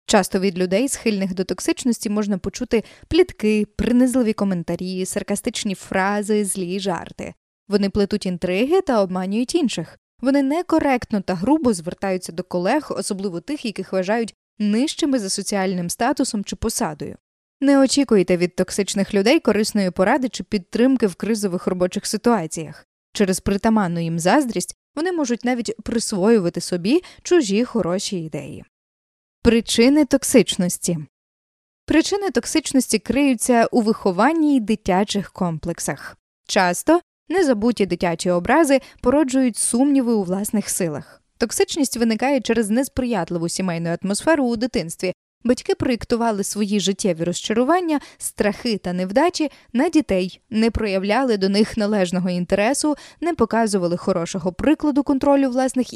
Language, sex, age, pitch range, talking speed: Ukrainian, female, 20-39, 190-260 Hz, 120 wpm